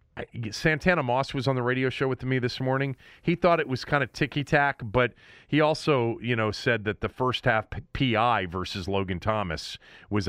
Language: English